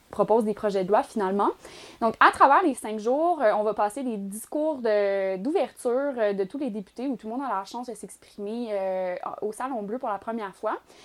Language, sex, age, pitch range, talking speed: French, female, 20-39, 205-255 Hz, 215 wpm